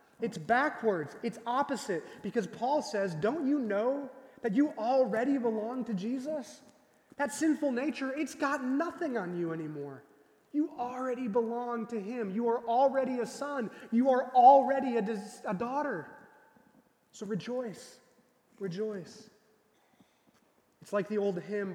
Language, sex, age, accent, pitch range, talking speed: English, male, 20-39, American, 190-245 Hz, 140 wpm